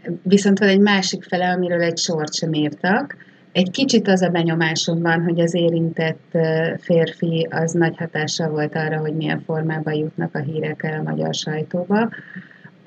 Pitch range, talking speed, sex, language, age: 165-190 Hz, 165 wpm, female, Hungarian, 30-49